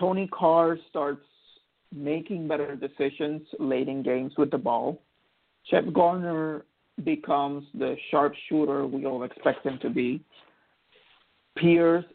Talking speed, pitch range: 125 wpm, 140-160 Hz